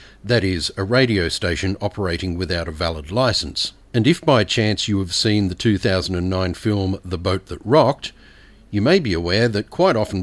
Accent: Australian